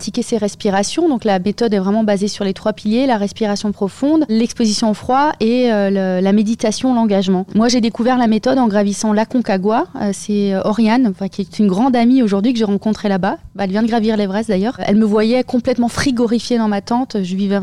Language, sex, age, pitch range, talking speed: French, female, 30-49, 200-235 Hz, 225 wpm